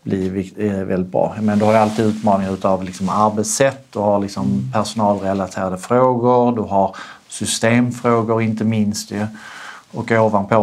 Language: Swedish